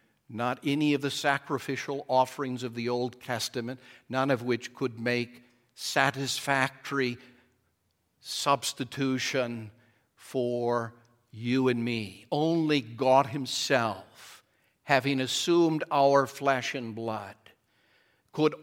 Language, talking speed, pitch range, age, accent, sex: English, 100 wpm, 125-150 Hz, 60-79, American, male